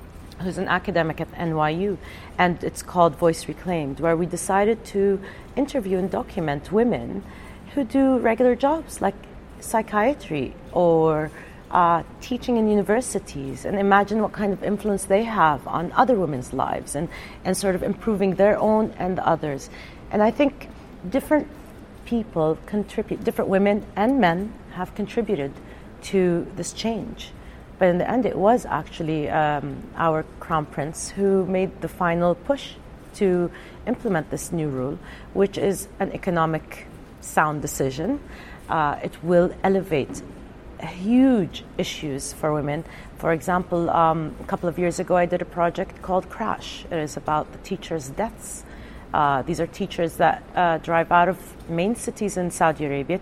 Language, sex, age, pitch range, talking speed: English, female, 40-59, 160-205 Hz, 150 wpm